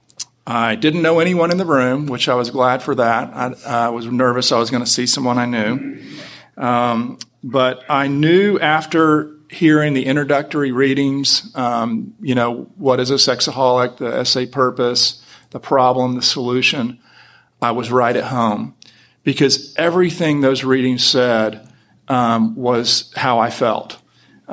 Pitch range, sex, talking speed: 120-140 Hz, male, 155 wpm